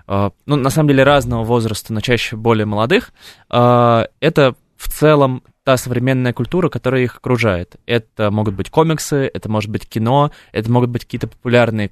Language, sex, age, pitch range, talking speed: Russian, male, 20-39, 105-125 Hz, 170 wpm